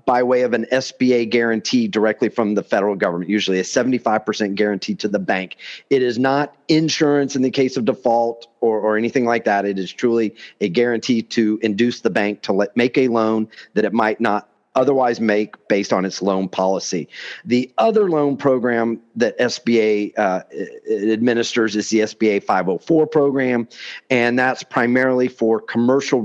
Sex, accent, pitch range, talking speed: male, American, 105-125 Hz, 175 wpm